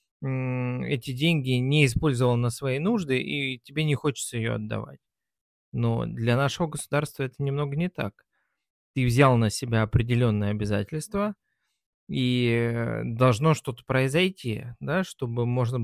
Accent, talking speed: native, 130 wpm